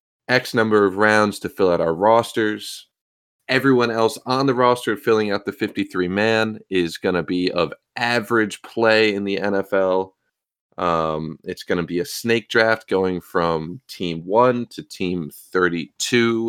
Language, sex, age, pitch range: English, male, 30-49, 90-110 Hz